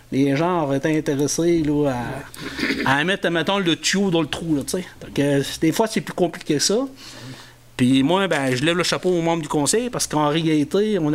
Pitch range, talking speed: 140-170 Hz, 220 wpm